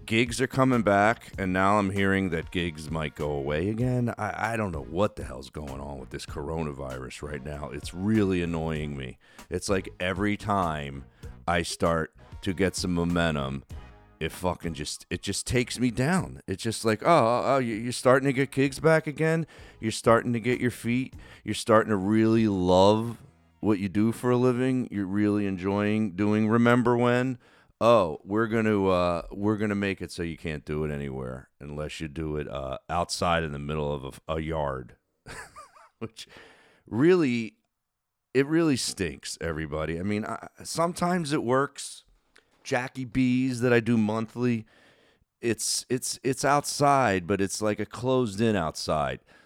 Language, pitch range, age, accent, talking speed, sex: English, 80-120 Hz, 40-59, American, 170 wpm, male